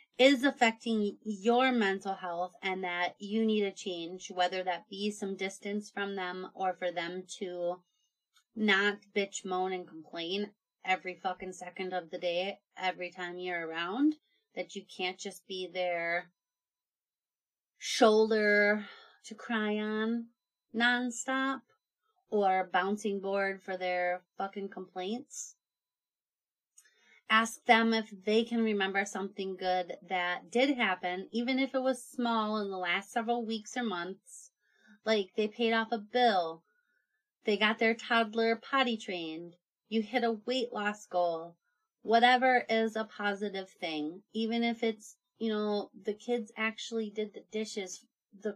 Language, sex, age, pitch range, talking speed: English, female, 30-49, 185-230 Hz, 140 wpm